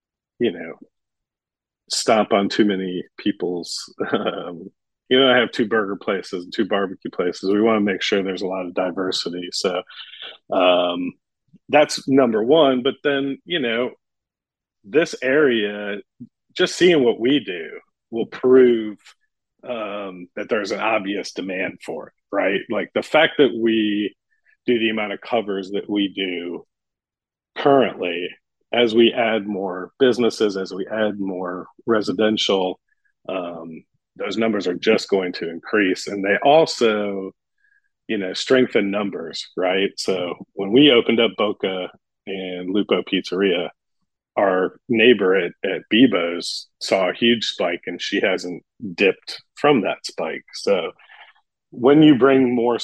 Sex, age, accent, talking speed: male, 40-59, American, 145 wpm